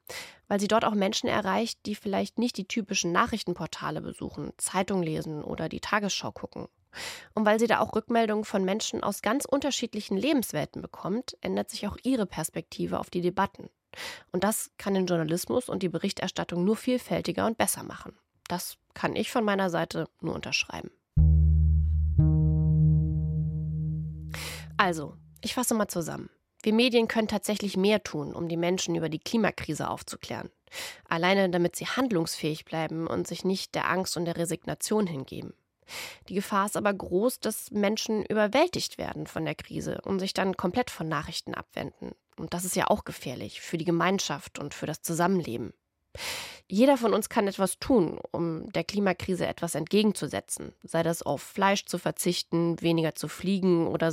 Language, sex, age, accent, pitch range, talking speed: German, female, 20-39, German, 165-215 Hz, 160 wpm